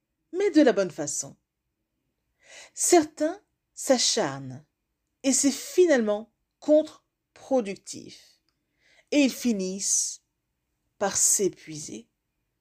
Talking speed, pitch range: 75 wpm, 185-310 Hz